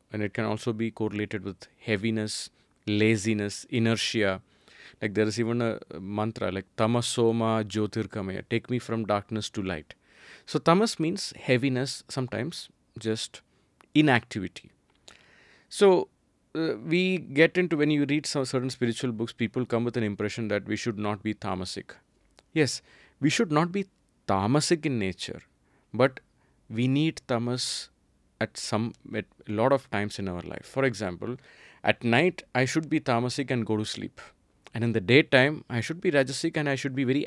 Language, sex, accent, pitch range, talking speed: English, male, Indian, 105-145 Hz, 165 wpm